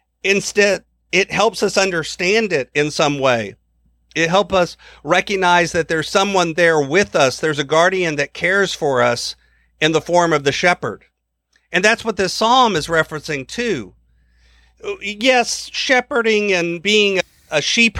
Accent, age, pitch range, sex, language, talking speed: American, 50-69, 150-200 Hz, male, English, 155 wpm